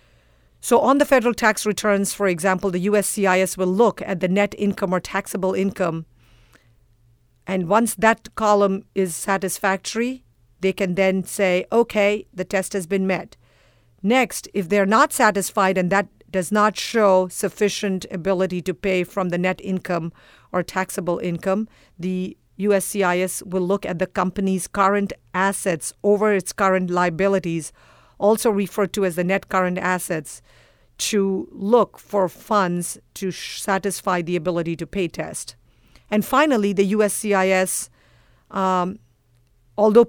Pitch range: 180-205 Hz